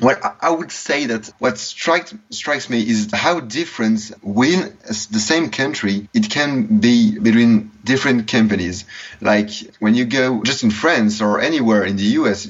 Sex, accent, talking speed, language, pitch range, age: male, French, 165 wpm, English, 105-130 Hz, 20-39